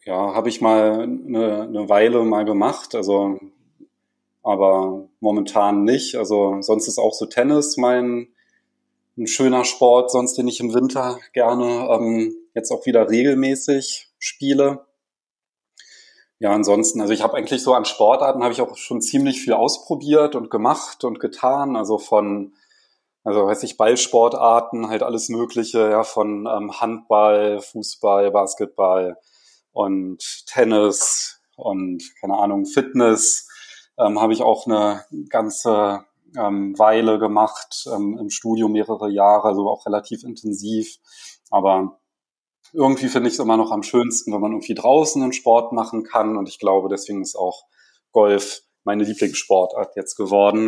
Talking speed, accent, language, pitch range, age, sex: 145 wpm, German, German, 100-125 Hz, 30-49, male